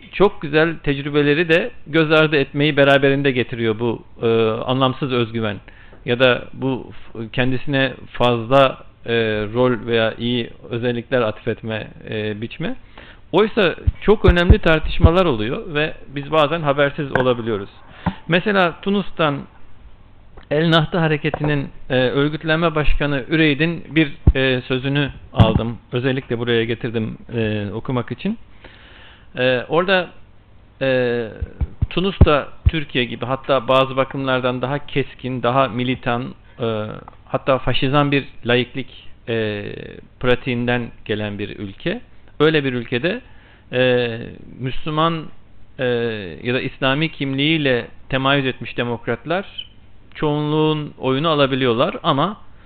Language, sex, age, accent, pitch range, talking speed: Turkish, male, 50-69, native, 115-145 Hz, 110 wpm